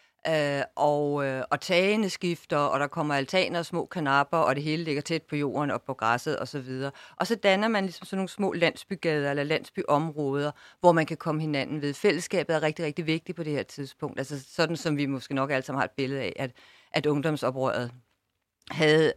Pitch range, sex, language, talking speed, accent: 140-175 Hz, female, Danish, 205 wpm, native